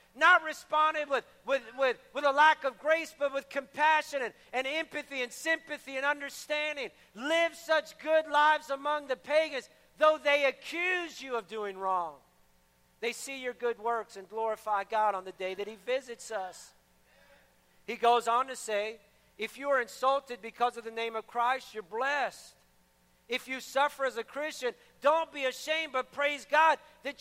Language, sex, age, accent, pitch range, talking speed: English, male, 50-69, American, 245-310 Hz, 175 wpm